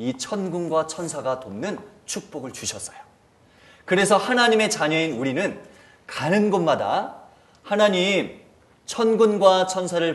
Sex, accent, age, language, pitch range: male, native, 30-49, Korean, 155-220 Hz